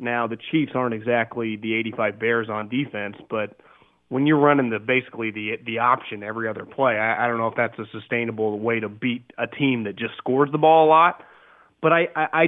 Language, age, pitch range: English, 30-49, 125-165 Hz